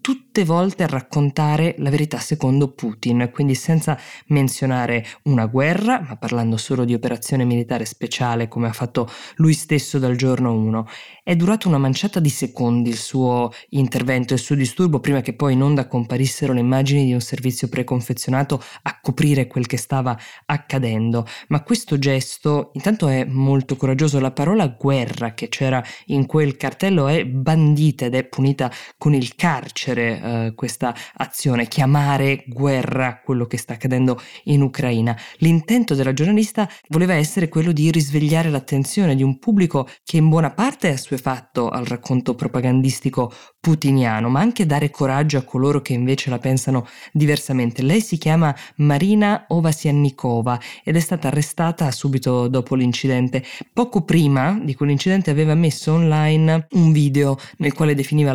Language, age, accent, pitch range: Italian, 20-39, native, 125-155 Hz